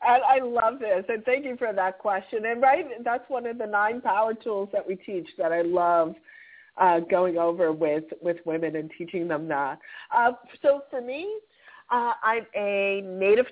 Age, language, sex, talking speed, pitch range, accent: 50-69, English, female, 185 wpm, 175-260 Hz, American